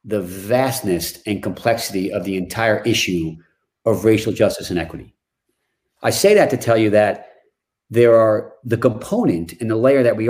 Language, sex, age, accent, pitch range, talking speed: English, male, 40-59, American, 105-130 Hz, 170 wpm